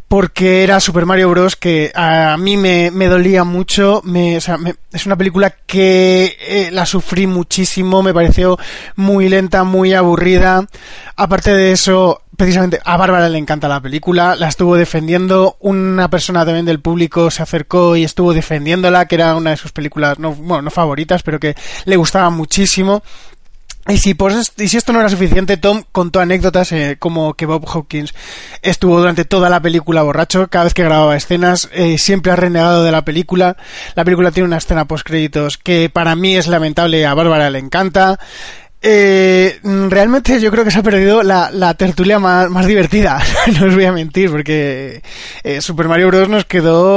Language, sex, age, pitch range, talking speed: Spanish, male, 20-39, 165-190 Hz, 180 wpm